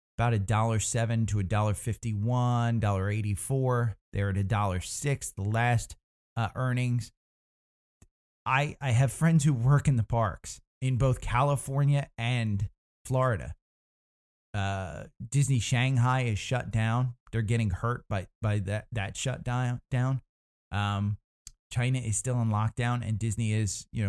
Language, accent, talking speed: English, American, 140 wpm